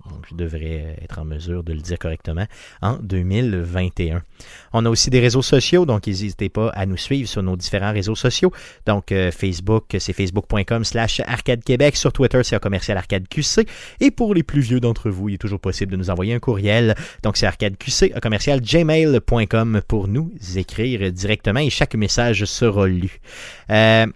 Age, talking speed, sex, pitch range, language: 30-49, 185 wpm, male, 95-120 Hz, French